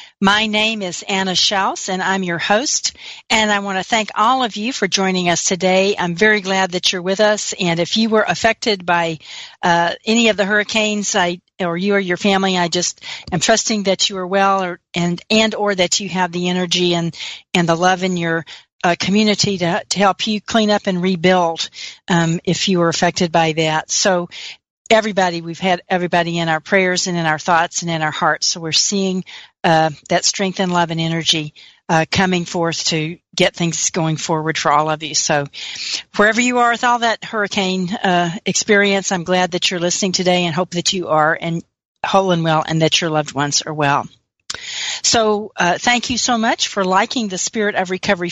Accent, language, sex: American, English, female